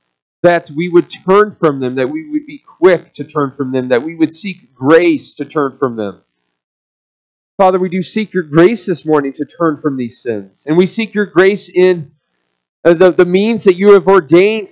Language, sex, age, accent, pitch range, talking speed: English, male, 40-59, American, 150-195 Hz, 205 wpm